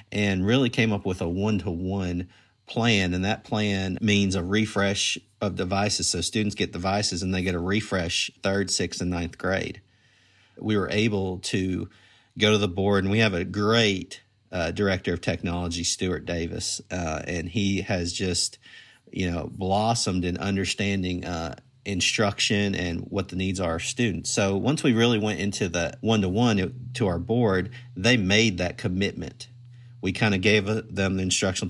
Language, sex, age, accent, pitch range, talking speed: English, male, 40-59, American, 90-105 Hz, 170 wpm